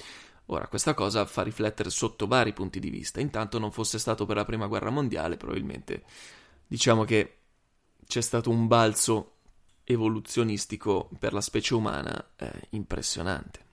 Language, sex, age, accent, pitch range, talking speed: Italian, male, 20-39, native, 105-120 Hz, 145 wpm